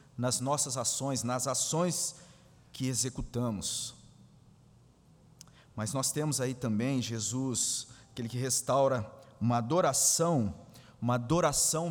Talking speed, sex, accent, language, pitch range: 100 wpm, male, Brazilian, Portuguese, 120-155 Hz